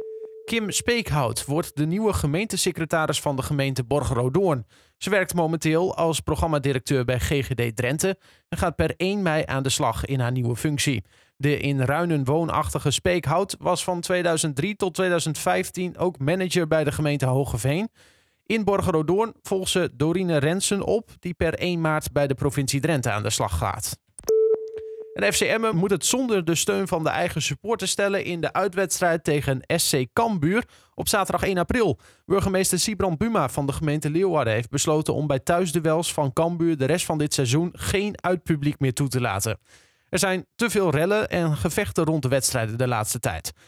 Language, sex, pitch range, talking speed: Dutch, male, 140-185 Hz, 175 wpm